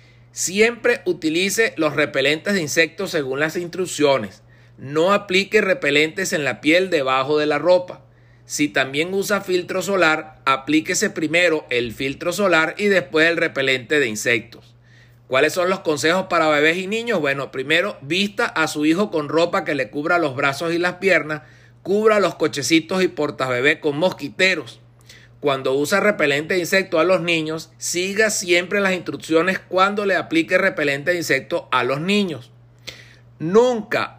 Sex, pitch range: male, 135-185 Hz